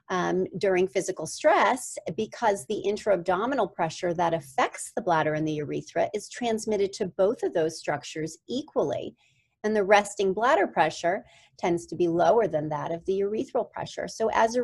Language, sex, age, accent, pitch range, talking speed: English, female, 40-59, American, 170-220 Hz, 170 wpm